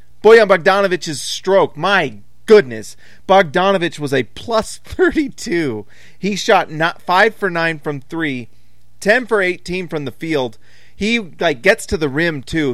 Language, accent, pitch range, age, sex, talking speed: English, American, 135-180 Hz, 30-49, male, 145 wpm